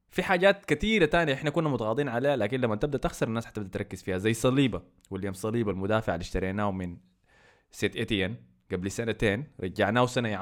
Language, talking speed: Arabic, 175 wpm